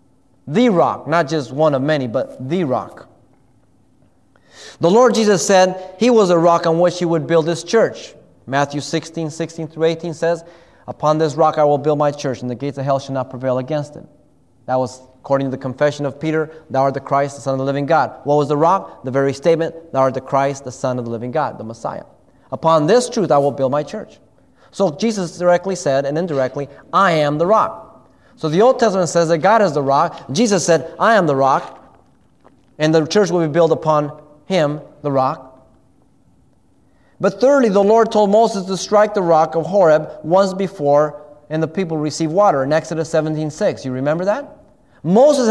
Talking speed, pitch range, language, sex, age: 205 wpm, 140-195 Hz, English, male, 30-49